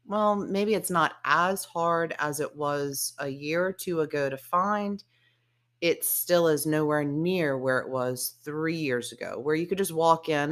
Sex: female